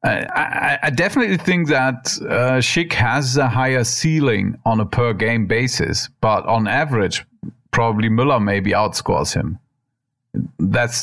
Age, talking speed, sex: 40-59, 135 wpm, male